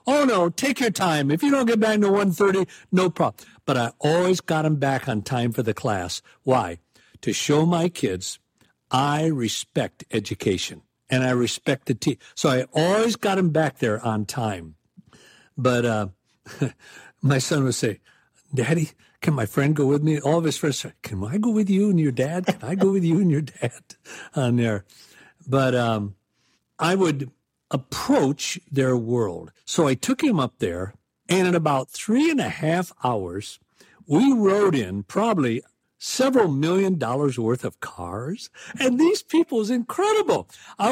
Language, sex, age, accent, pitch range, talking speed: English, male, 60-79, American, 130-200 Hz, 175 wpm